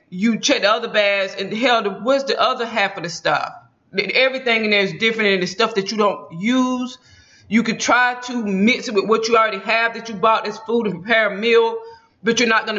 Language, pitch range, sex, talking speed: English, 205-250 Hz, female, 235 wpm